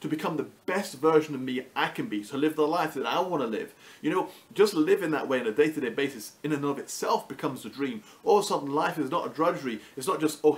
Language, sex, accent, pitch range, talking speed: English, male, British, 135-175 Hz, 270 wpm